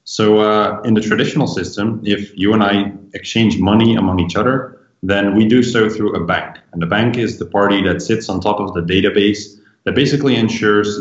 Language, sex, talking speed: English, male, 205 wpm